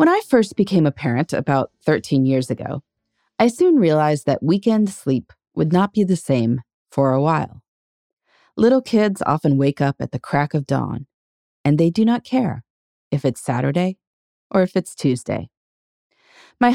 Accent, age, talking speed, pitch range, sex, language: American, 30-49, 170 wpm, 135-215 Hz, female, English